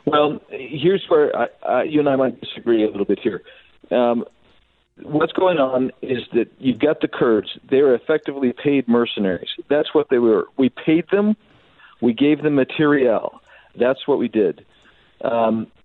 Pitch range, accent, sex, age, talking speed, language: 120-155 Hz, American, male, 50-69, 160 wpm, English